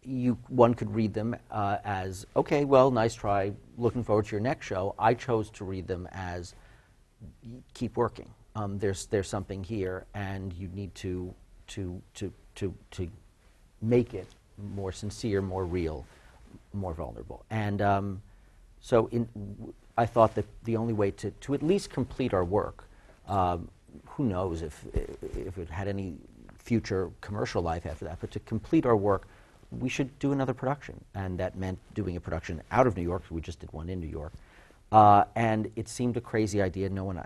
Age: 40-59